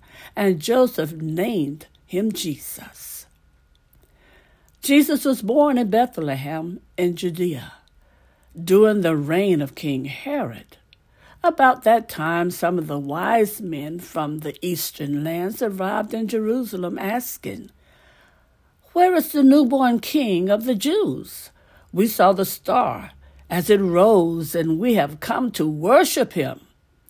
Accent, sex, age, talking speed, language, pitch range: American, female, 60-79, 125 wpm, English, 160-235 Hz